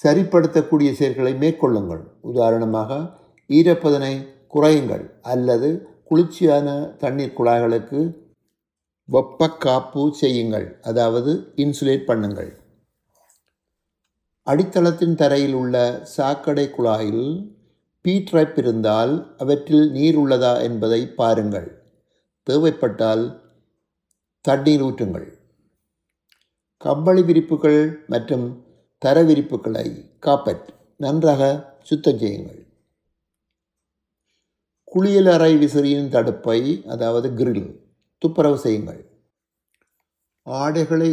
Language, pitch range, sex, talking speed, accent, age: Tamil, 120-150 Hz, male, 70 wpm, native, 60-79